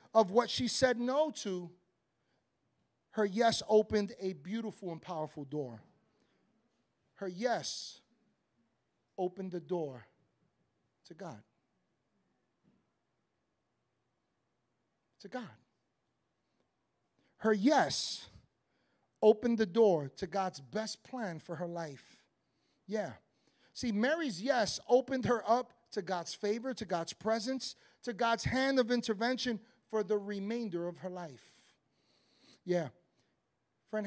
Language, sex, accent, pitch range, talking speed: English, male, American, 180-245 Hz, 105 wpm